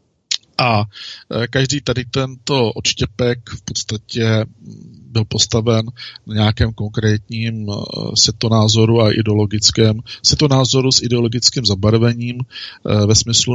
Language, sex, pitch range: Czech, male, 105-120 Hz